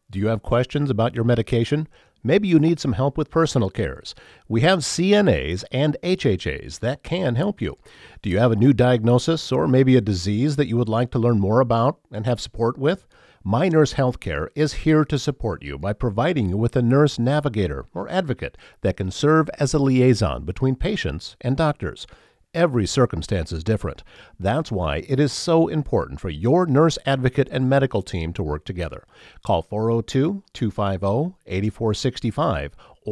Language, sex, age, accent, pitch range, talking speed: English, male, 50-69, American, 105-140 Hz, 170 wpm